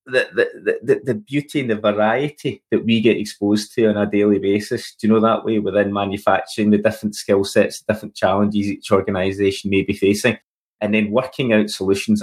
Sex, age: male, 20-39